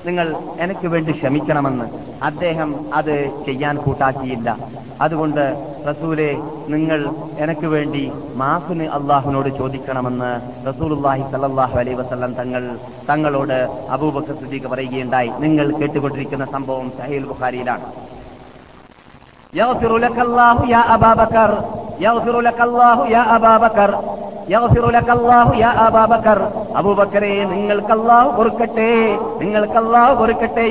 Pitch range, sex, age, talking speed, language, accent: 150-230 Hz, male, 30-49, 60 wpm, Malayalam, native